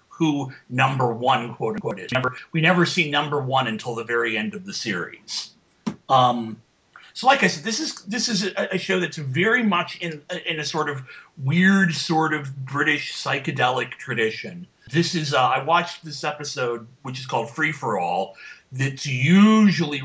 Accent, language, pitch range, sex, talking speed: American, English, 120-160 Hz, male, 175 wpm